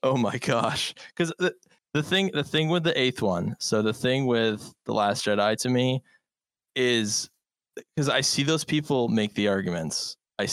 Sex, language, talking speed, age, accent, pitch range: male, English, 180 wpm, 20-39, American, 115-165 Hz